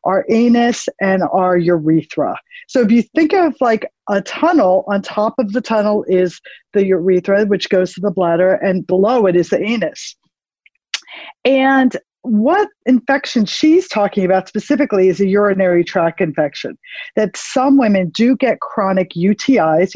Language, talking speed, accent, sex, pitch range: English, 155 wpm, American, female, 185-250 Hz